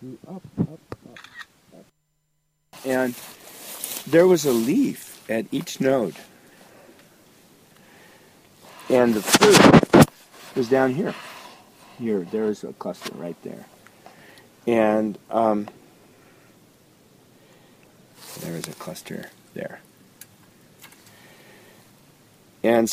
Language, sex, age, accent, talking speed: English, male, 50-69, American, 85 wpm